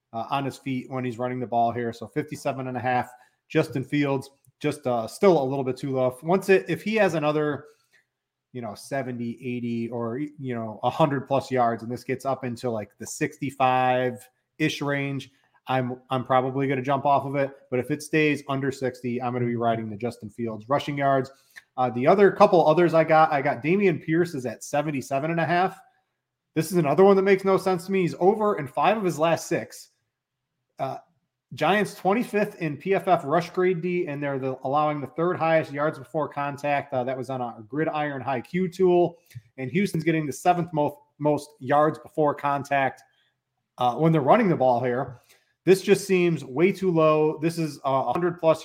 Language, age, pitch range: English, 30-49, 130-165 Hz